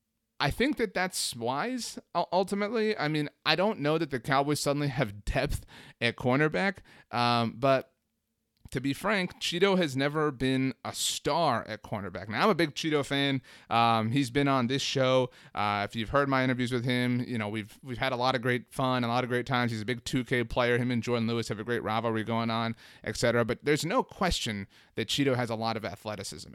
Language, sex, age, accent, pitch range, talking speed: English, male, 30-49, American, 120-165 Hz, 210 wpm